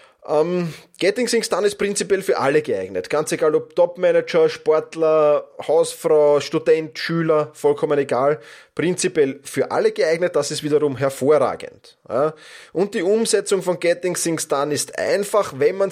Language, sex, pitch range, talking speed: German, male, 145-230 Hz, 140 wpm